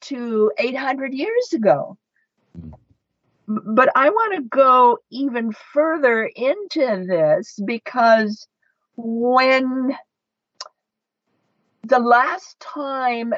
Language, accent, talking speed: English, American, 80 wpm